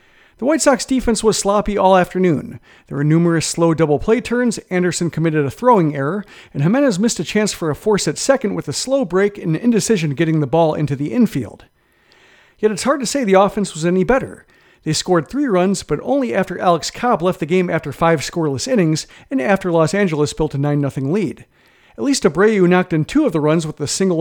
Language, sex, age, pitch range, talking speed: English, male, 40-59, 155-215 Hz, 220 wpm